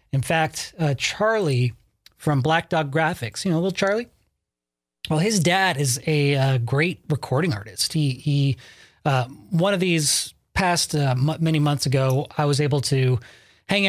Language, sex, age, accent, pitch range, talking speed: English, male, 30-49, American, 135-165 Hz, 165 wpm